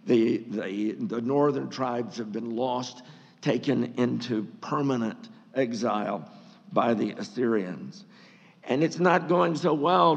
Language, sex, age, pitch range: English, male, 50-69, 125-155 Hz